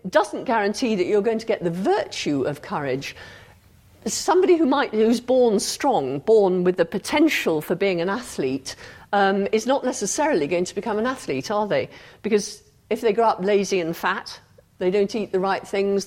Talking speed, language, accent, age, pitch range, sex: 185 wpm, English, British, 50-69, 185-240 Hz, female